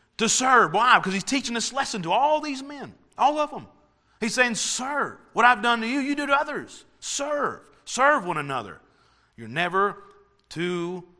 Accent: American